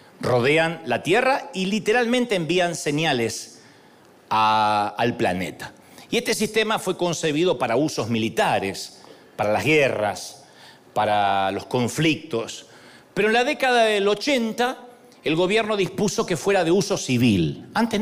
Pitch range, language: 155-230 Hz, Spanish